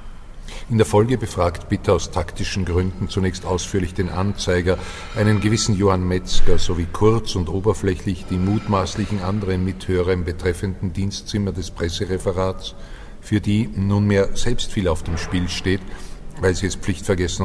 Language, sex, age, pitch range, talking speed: German, male, 50-69, 90-100 Hz, 145 wpm